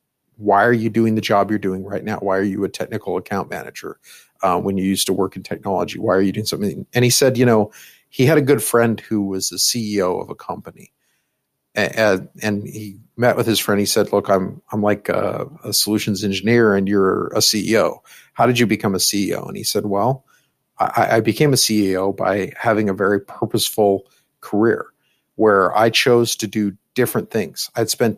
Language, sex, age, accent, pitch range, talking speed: English, male, 50-69, American, 100-120 Hz, 205 wpm